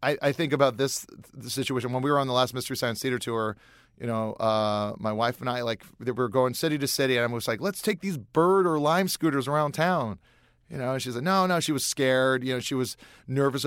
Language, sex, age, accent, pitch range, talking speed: English, male, 30-49, American, 120-155 Hz, 250 wpm